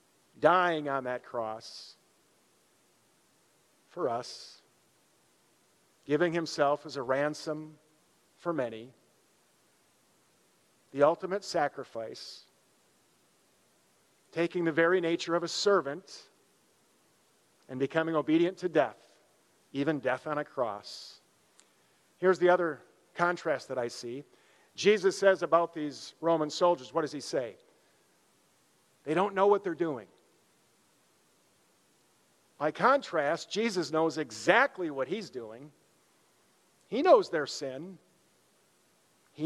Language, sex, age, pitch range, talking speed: English, male, 50-69, 145-175 Hz, 105 wpm